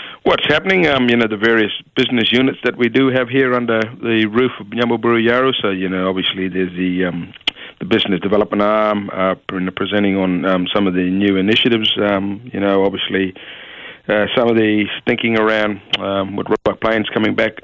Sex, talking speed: male, 190 wpm